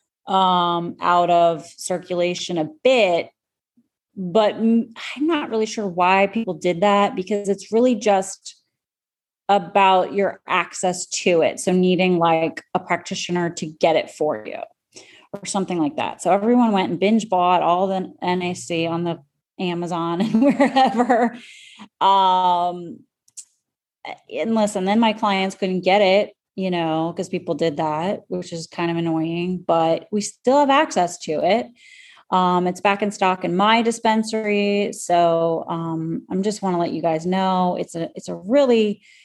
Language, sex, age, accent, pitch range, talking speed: English, female, 30-49, American, 175-205 Hz, 155 wpm